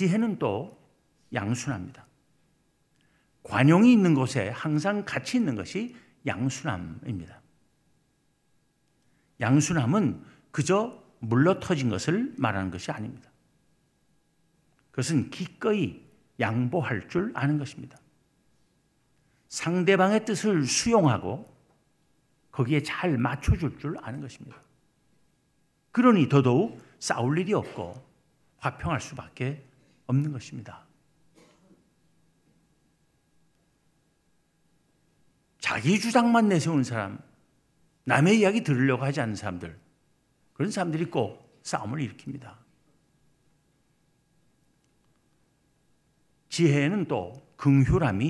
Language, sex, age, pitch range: Korean, male, 60-79, 130-175 Hz